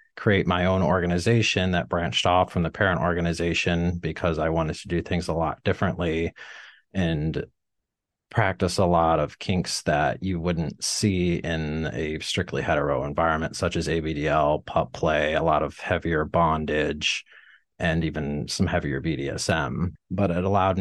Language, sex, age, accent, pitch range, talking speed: English, male, 30-49, American, 80-95 Hz, 155 wpm